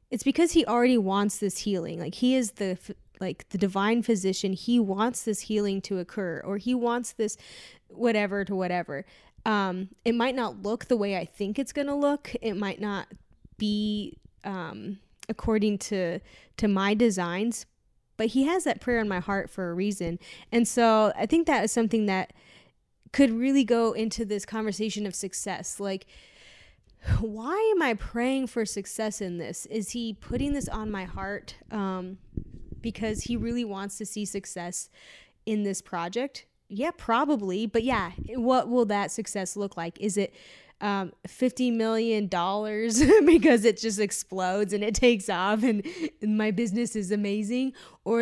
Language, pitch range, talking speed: English, 195-235 Hz, 165 wpm